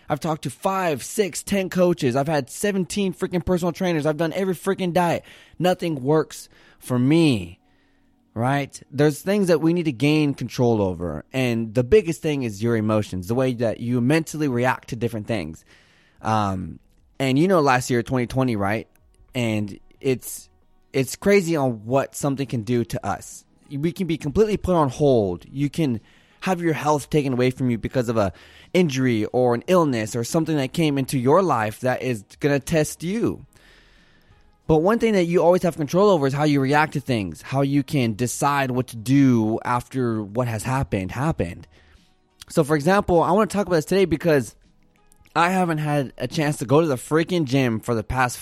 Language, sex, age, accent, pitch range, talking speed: English, male, 20-39, American, 115-165 Hz, 190 wpm